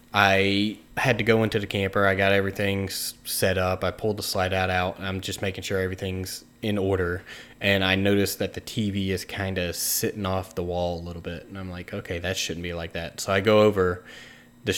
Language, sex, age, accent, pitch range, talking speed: English, male, 20-39, American, 90-105 Hz, 225 wpm